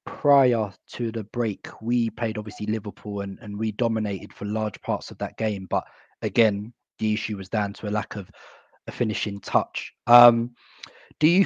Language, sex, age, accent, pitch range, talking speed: English, male, 20-39, British, 105-120 Hz, 180 wpm